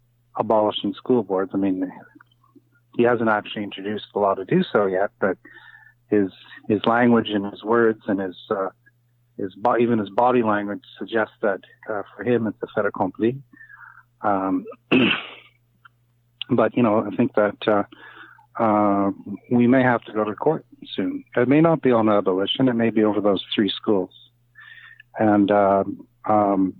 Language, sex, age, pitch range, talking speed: English, male, 40-59, 100-120 Hz, 165 wpm